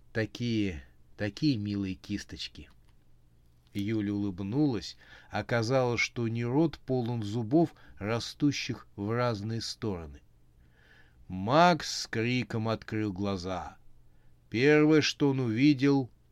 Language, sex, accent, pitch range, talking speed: Russian, male, native, 90-130 Hz, 90 wpm